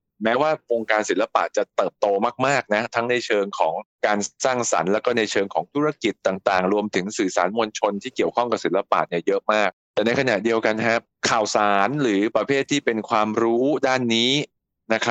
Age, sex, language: 20-39, male, Thai